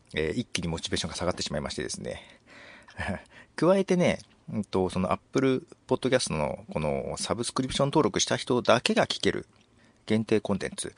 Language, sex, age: Japanese, male, 40-59